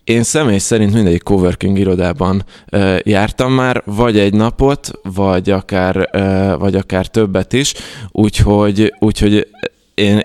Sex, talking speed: male, 110 wpm